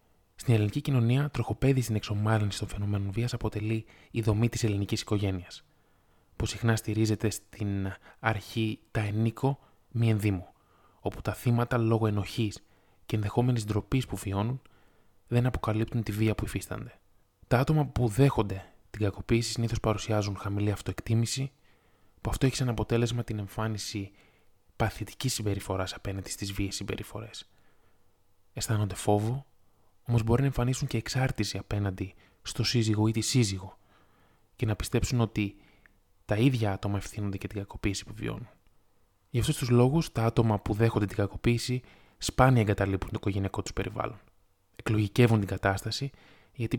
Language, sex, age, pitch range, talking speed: Greek, male, 20-39, 100-120 Hz, 140 wpm